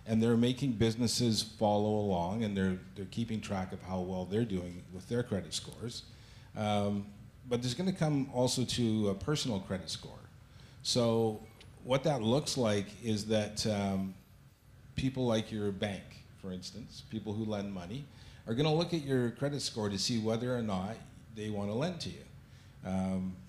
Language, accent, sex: English, American, male